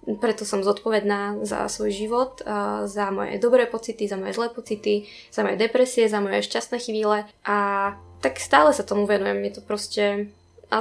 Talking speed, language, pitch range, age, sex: 170 wpm, Slovak, 195-215 Hz, 10-29, female